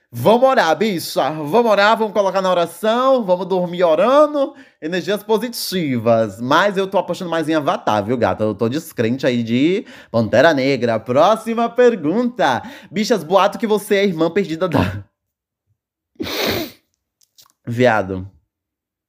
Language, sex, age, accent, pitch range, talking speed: Portuguese, male, 20-39, Brazilian, 135-220 Hz, 130 wpm